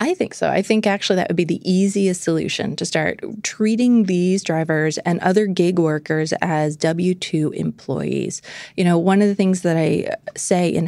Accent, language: American, English